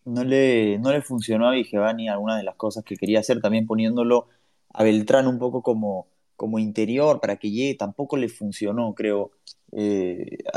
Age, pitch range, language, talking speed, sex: 20-39, 105-135 Hz, Spanish, 175 wpm, male